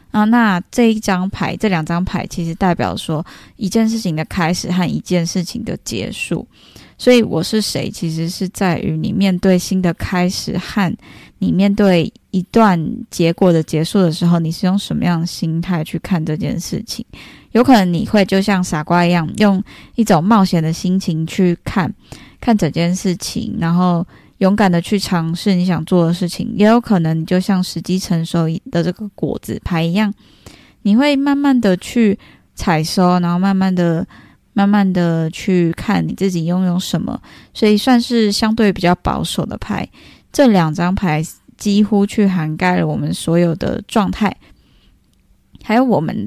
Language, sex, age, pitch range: Chinese, female, 10-29, 170-210 Hz